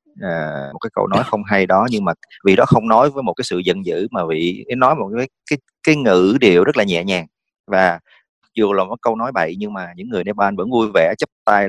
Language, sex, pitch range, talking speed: English, male, 90-115 Hz, 260 wpm